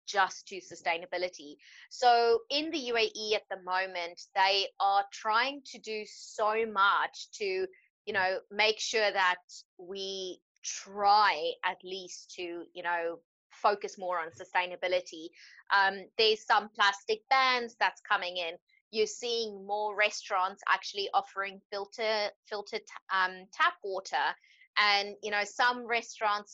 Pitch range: 190-245 Hz